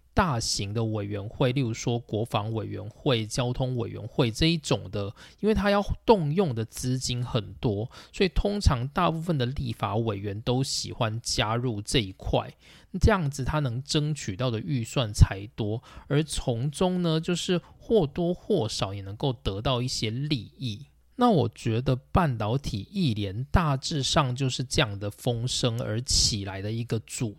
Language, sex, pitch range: Chinese, male, 110-150 Hz